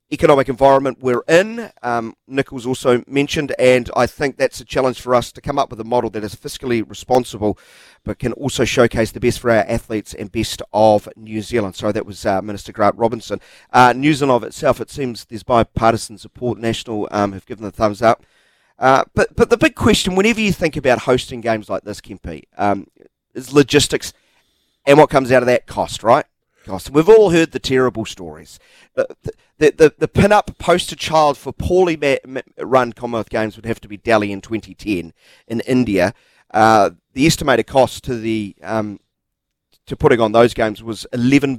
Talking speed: 190 wpm